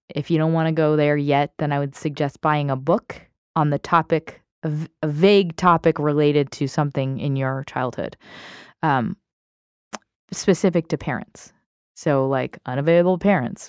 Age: 20-39